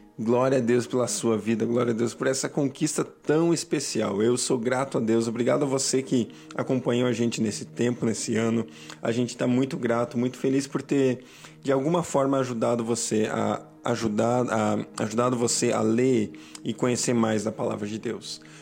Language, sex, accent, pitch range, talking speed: Portuguese, male, Brazilian, 110-130 Hz, 175 wpm